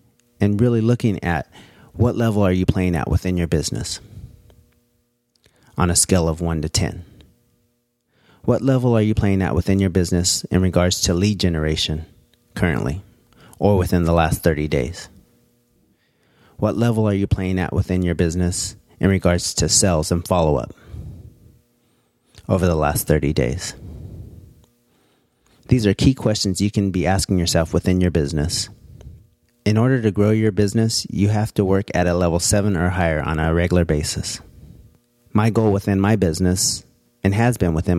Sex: male